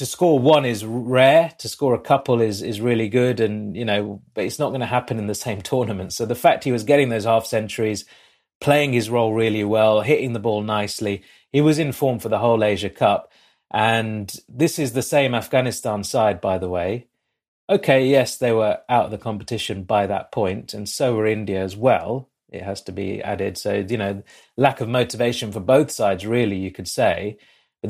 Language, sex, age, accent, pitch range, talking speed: English, male, 30-49, British, 105-130 Hz, 215 wpm